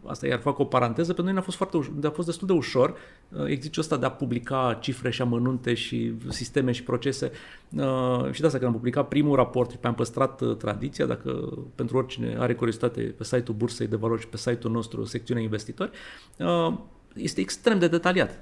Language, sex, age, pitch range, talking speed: Romanian, male, 30-49, 125-170 Hz, 185 wpm